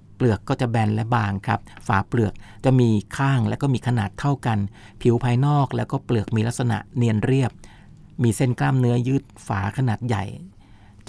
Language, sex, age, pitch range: Thai, male, 60-79, 105-130 Hz